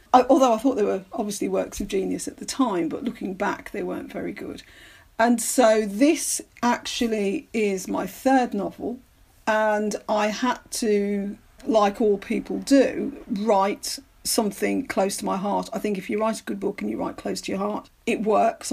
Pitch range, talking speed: 205-245 Hz, 185 wpm